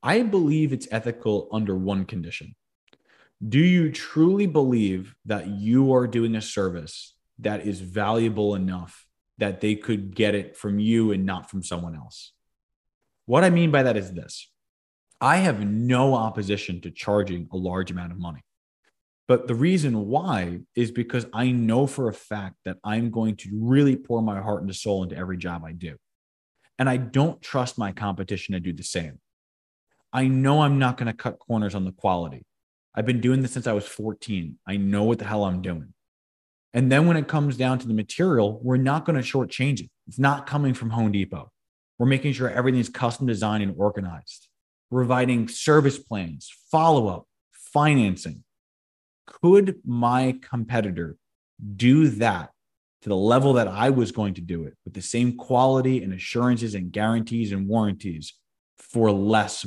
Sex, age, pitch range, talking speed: male, 20-39, 95-125 Hz, 175 wpm